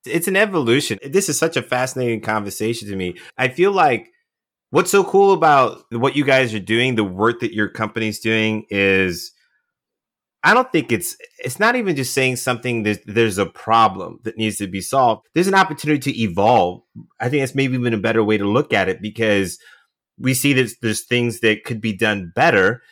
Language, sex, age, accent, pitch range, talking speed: English, male, 30-49, American, 110-140 Hz, 205 wpm